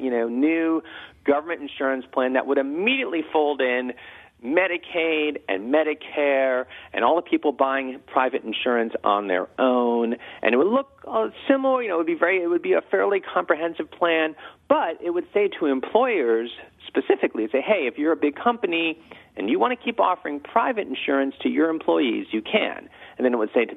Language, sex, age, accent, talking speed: English, male, 40-59, American, 190 wpm